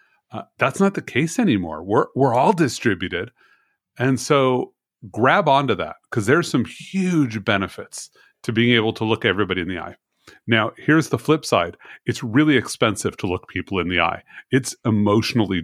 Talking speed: 175 wpm